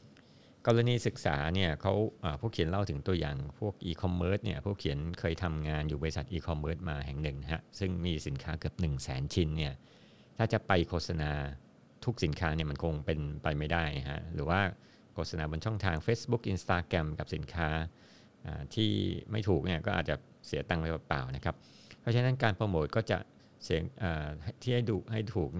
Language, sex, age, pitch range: Thai, male, 60-79, 75-100 Hz